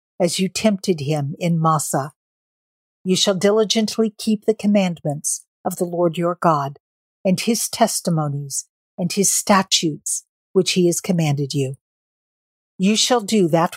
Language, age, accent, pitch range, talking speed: English, 50-69, American, 155-200 Hz, 140 wpm